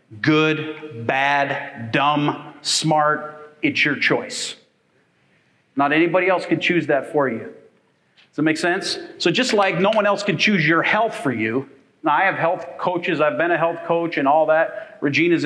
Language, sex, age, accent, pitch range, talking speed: English, male, 40-59, American, 145-185 Hz, 175 wpm